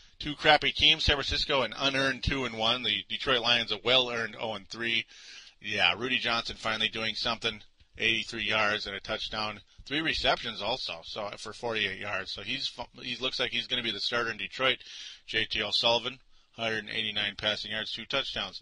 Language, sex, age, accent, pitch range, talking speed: English, male, 30-49, American, 105-130 Hz, 175 wpm